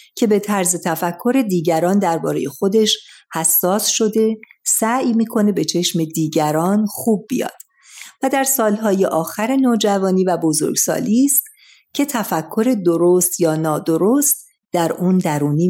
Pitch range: 170-225 Hz